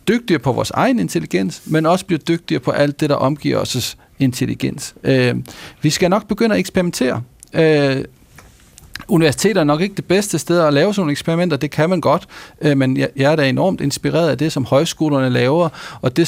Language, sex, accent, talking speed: Danish, male, native, 190 wpm